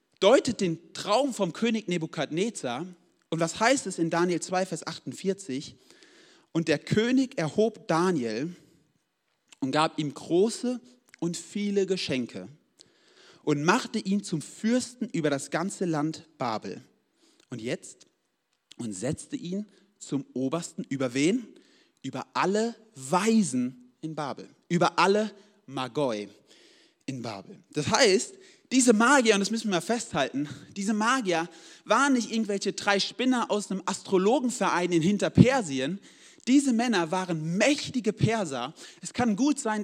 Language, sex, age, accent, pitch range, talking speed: German, male, 40-59, German, 145-220 Hz, 130 wpm